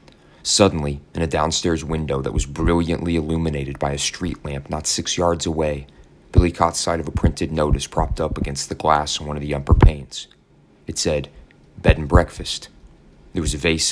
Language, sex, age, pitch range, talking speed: English, male, 30-49, 75-85 Hz, 190 wpm